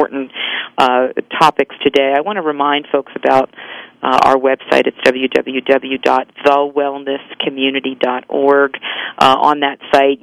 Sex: female